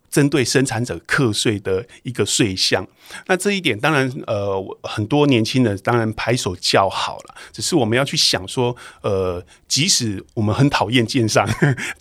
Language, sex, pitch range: Chinese, male, 115-160 Hz